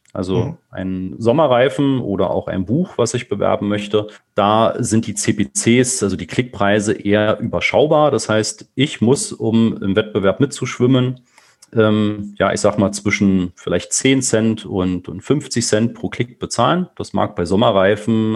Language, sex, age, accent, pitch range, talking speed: German, male, 40-59, German, 100-125 Hz, 155 wpm